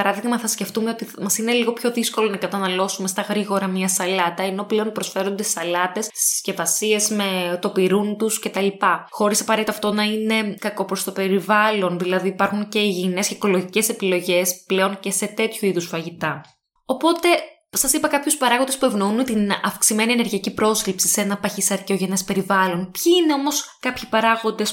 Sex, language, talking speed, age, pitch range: female, Greek, 165 wpm, 20-39, 195-230 Hz